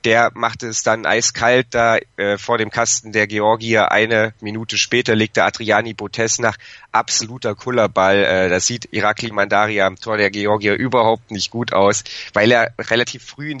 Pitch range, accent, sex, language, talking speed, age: 105-125 Hz, German, male, German, 170 wpm, 30-49